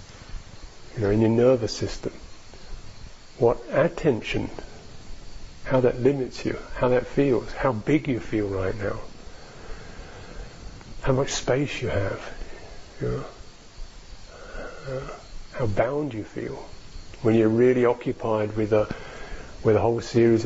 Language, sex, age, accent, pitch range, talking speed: English, male, 50-69, British, 100-120 Hz, 125 wpm